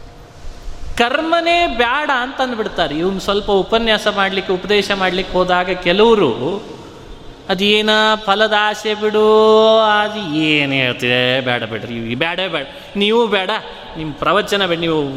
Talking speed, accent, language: 115 wpm, native, Kannada